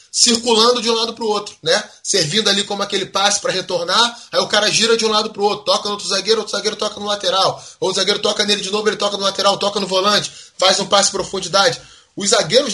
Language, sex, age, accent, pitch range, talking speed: Portuguese, male, 20-39, Brazilian, 180-230 Hz, 255 wpm